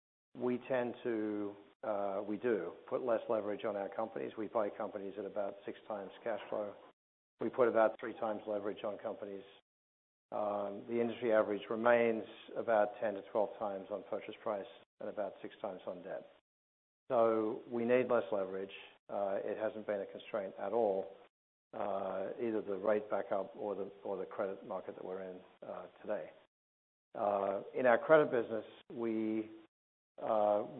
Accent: American